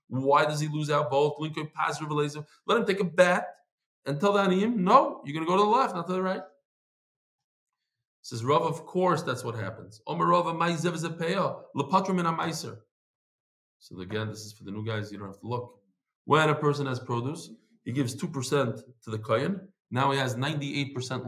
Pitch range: 125-195 Hz